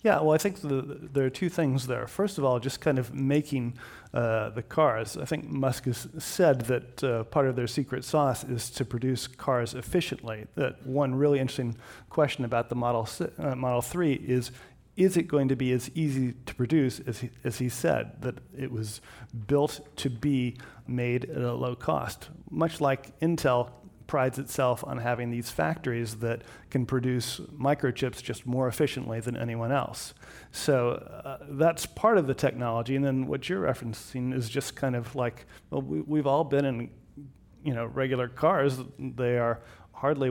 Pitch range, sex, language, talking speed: 120-140 Hz, male, English, 185 wpm